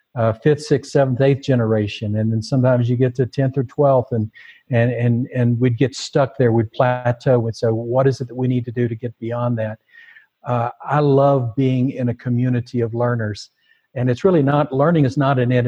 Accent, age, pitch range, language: American, 60-79, 120-145 Hz, English